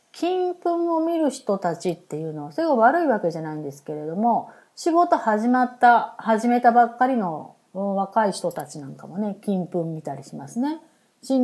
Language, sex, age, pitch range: Japanese, female, 30-49, 175-265 Hz